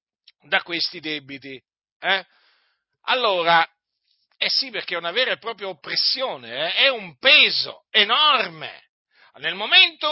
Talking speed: 130 wpm